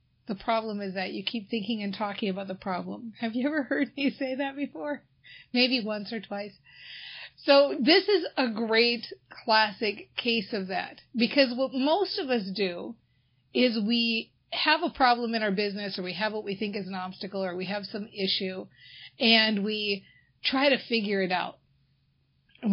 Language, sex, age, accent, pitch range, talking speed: English, female, 40-59, American, 195-265 Hz, 180 wpm